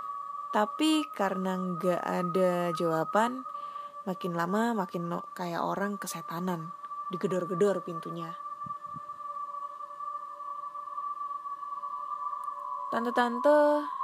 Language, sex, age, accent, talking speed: Indonesian, female, 20-39, native, 60 wpm